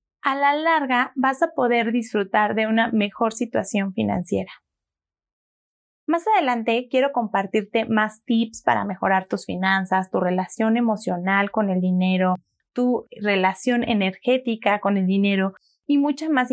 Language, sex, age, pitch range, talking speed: Spanish, female, 20-39, 205-255 Hz, 135 wpm